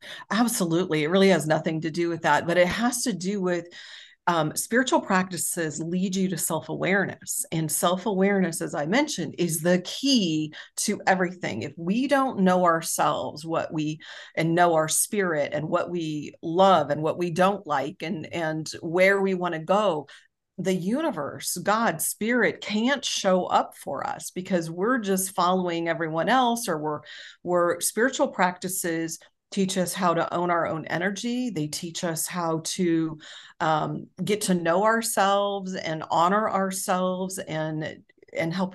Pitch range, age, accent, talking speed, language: 165-195 Hz, 40-59, American, 165 wpm, English